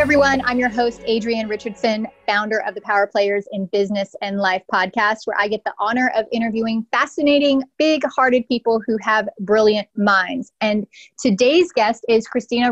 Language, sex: English, female